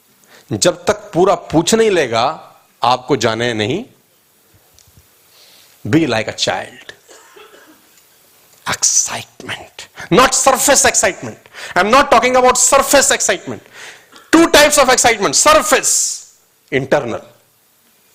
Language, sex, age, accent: Hindi, male, 40-59, native